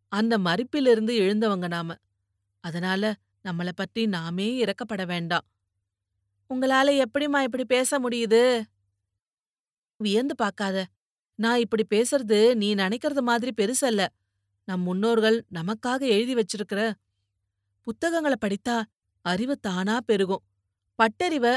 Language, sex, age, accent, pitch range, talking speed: Tamil, female, 30-49, native, 175-235 Hz, 95 wpm